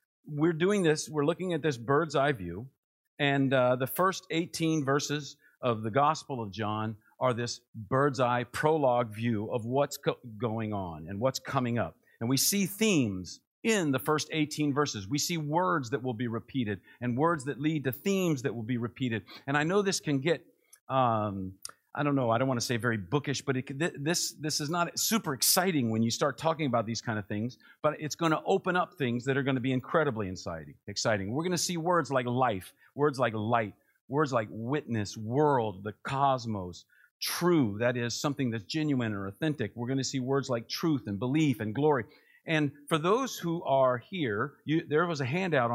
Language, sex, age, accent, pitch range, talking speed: English, male, 50-69, American, 120-155 Hz, 200 wpm